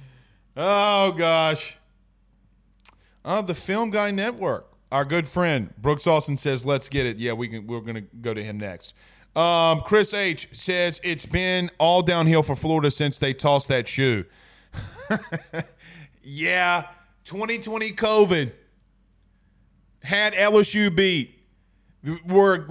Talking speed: 130 wpm